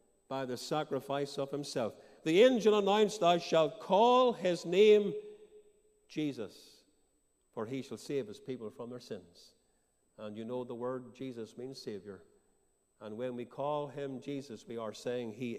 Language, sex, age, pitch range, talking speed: English, male, 50-69, 135-185 Hz, 160 wpm